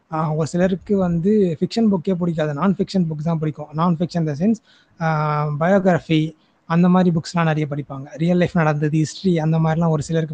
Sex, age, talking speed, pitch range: male, 20-39, 170 wpm, 155-195 Hz